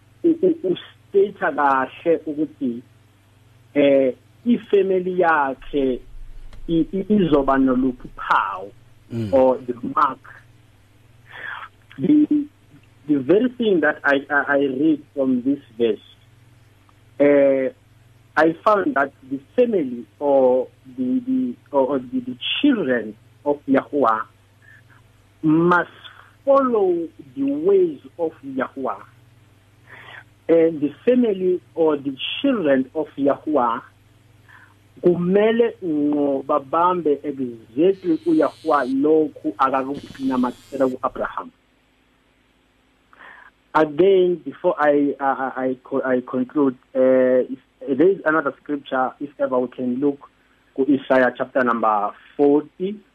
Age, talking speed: 50-69, 80 wpm